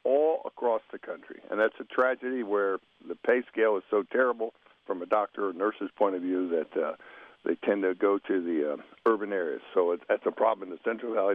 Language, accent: English, American